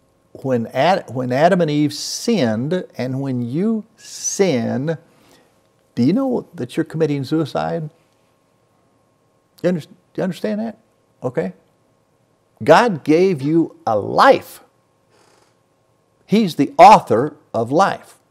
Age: 50-69